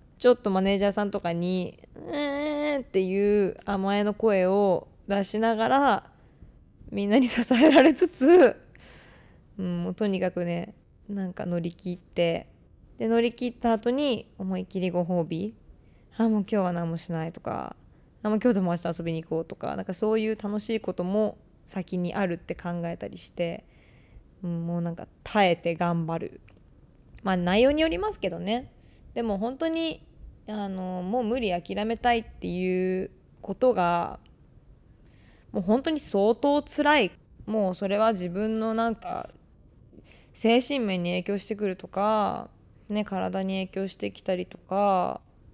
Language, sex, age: Japanese, female, 20-39